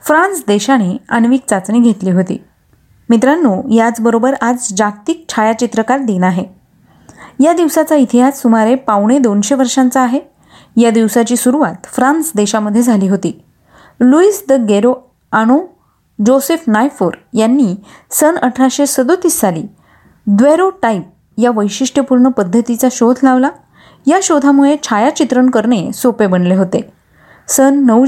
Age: 30-49